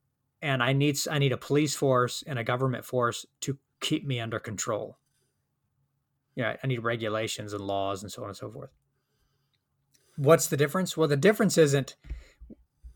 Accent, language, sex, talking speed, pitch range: American, English, male, 175 wpm, 125-155 Hz